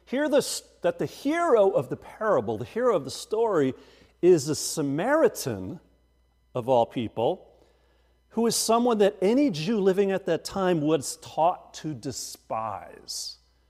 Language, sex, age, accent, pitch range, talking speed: English, male, 50-69, American, 120-200 Hz, 140 wpm